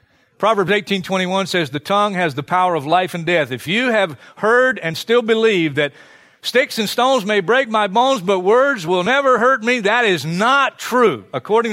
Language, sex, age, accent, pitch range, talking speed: English, male, 50-69, American, 140-195 Hz, 195 wpm